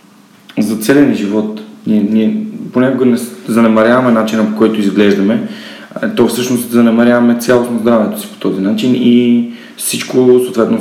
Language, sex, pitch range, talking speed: Bulgarian, male, 105-135 Hz, 135 wpm